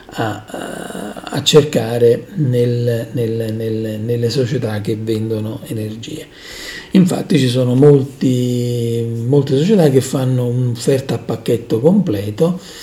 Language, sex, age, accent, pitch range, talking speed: Italian, male, 40-59, native, 115-150 Hz, 90 wpm